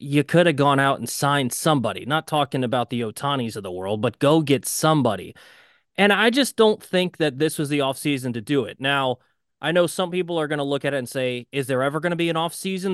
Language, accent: English, American